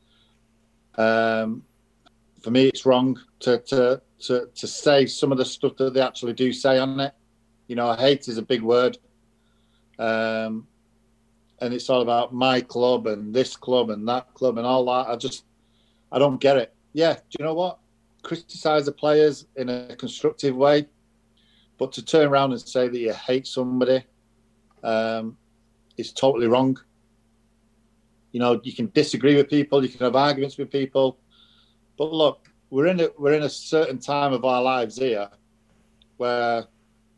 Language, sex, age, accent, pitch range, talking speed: English, male, 40-59, British, 115-135 Hz, 170 wpm